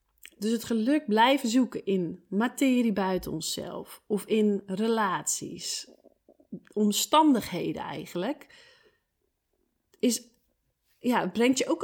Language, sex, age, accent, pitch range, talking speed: Dutch, female, 30-49, Dutch, 190-235 Hz, 100 wpm